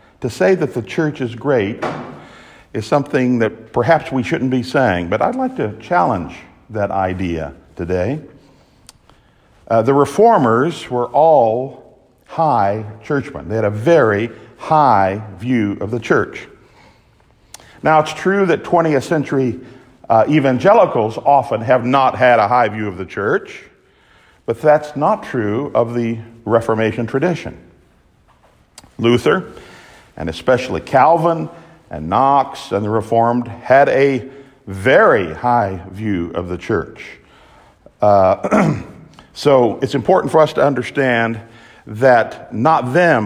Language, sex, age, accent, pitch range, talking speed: English, male, 50-69, American, 100-140 Hz, 130 wpm